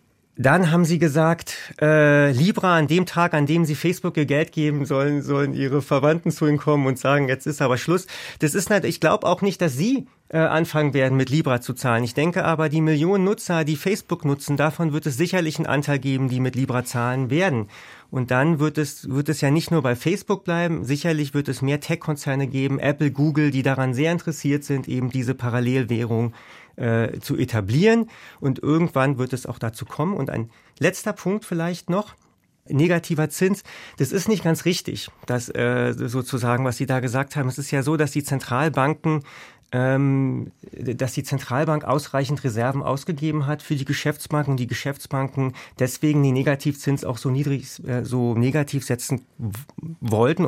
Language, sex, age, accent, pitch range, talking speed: German, male, 30-49, German, 130-160 Hz, 185 wpm